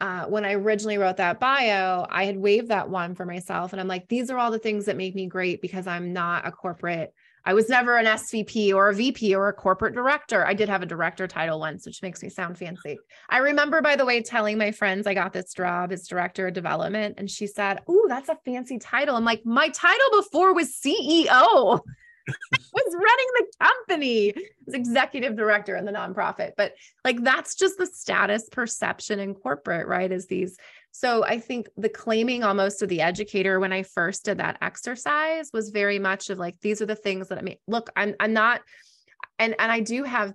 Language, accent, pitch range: English, American, 185-240 Hz